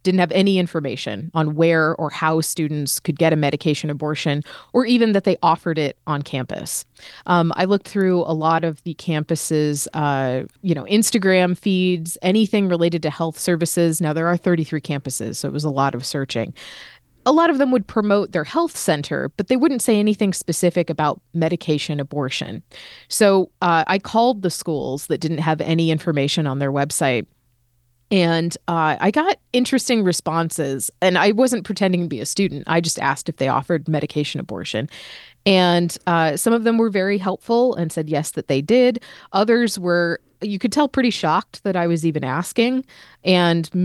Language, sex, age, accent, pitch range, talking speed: English, female, 30-49, American, 155-195 Hz, 185 wpm